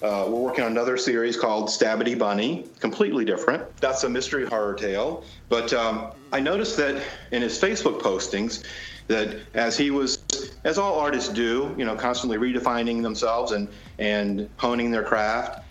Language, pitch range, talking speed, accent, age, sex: English, 110-155 Hz, 165 wpm, American, 40-59, male